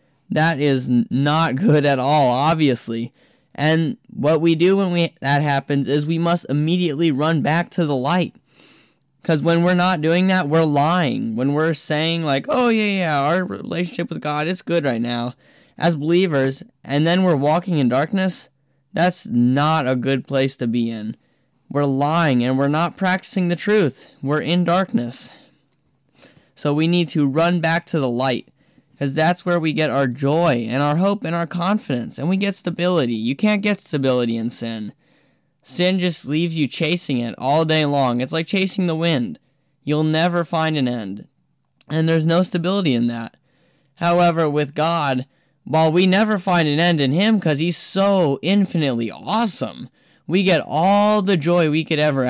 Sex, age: male, 10-29